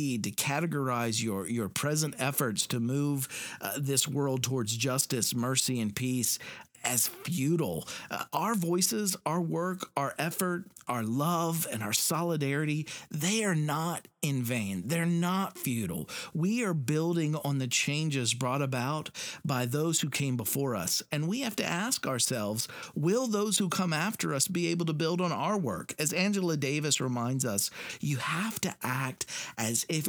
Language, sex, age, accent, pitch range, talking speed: English, male, 50-69, American, 130-180 Hz, 165 wpm